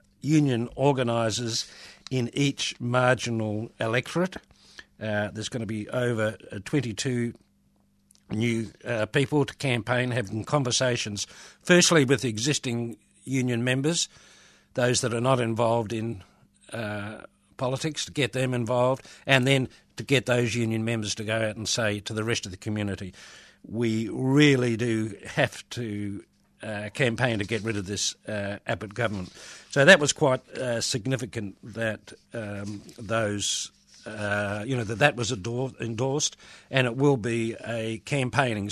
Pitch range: 105-125 Hz